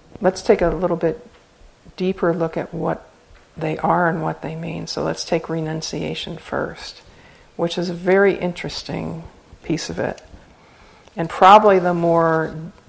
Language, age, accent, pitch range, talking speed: English, 50-69, American, 160-180 Hz, 150 wpm